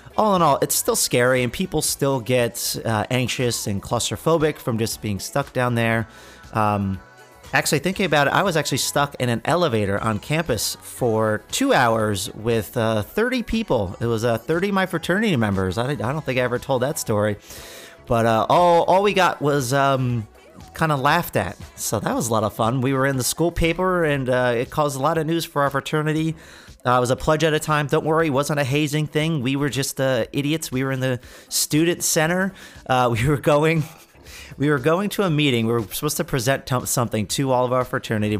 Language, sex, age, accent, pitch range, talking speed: English, male, 30-49, American, 115-155 Hz, 215 wpm